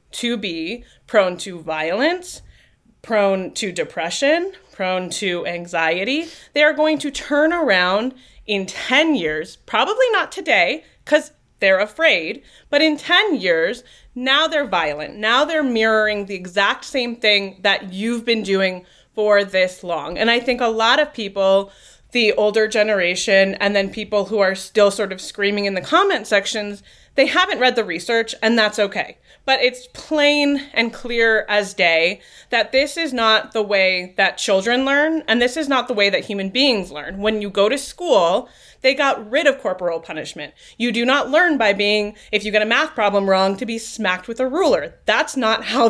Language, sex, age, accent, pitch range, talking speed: English, female, 30-49, American, 200-280 Hz, 180 wpm